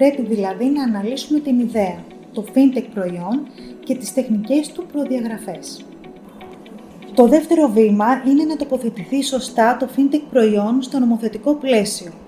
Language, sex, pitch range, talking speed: Greek, female, 215-275 Hz, 130 wpm